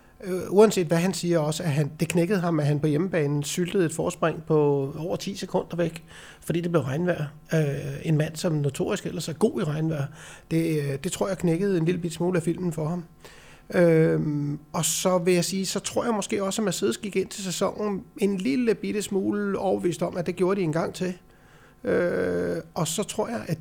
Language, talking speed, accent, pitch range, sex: Danish, 210 wpm, native, 160-190 Hz, male